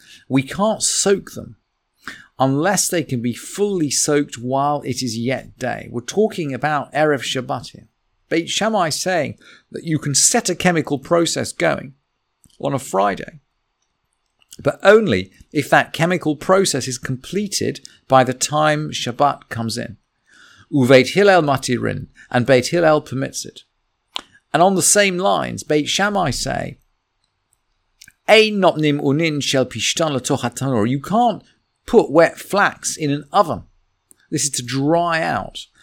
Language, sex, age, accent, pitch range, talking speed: English, male, 40-59, British, 125-160 Hz, 125 wpm